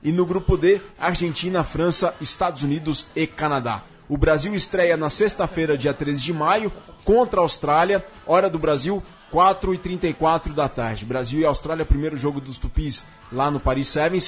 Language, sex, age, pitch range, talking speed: Portuguese, male, 20-39, 145-180 Hz, 165 wpm